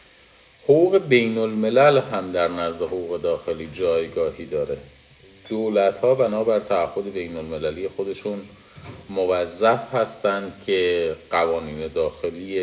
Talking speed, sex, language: 100 wpm, male, Persian